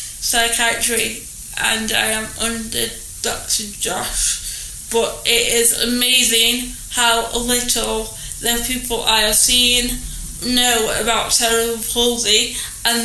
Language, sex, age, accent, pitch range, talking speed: English, female, 10-29, British, 230-255 Hz, 105 wpm